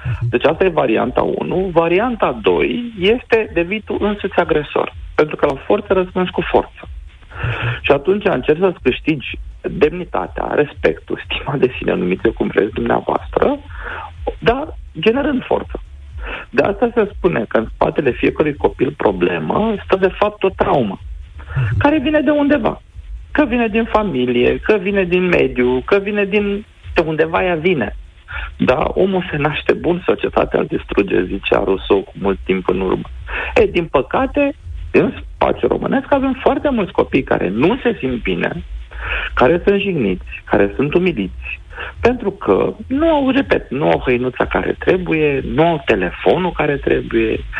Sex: male